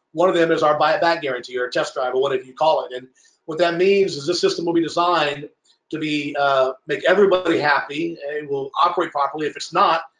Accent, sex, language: American, male, English